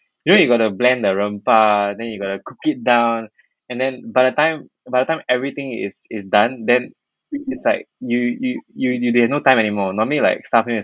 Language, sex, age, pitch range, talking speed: English, male, 20-39, 100-120 Hz, 225 wpm